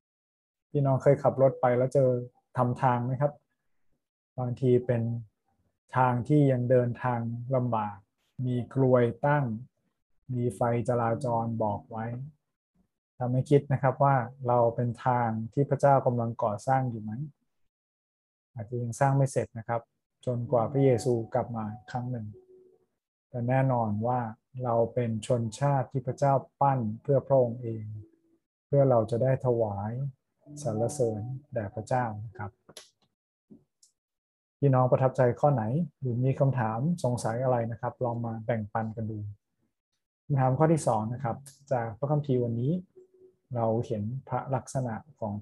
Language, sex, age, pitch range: Thai, male, 20-39, 115-135 Hz